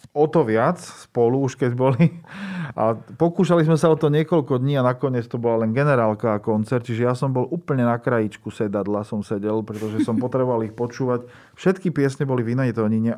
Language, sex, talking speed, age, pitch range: Slovak, male, 195 wpm, 40-59, 110-130 Hz